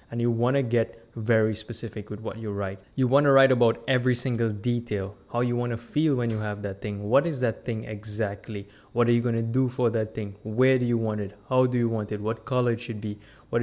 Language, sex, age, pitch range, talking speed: English, male, 20-39, 105-125 Hz, 260 wpm